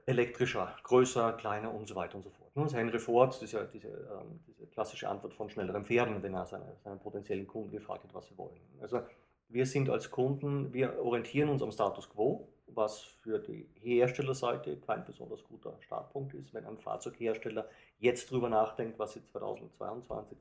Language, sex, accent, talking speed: German, male, German, 180 wpm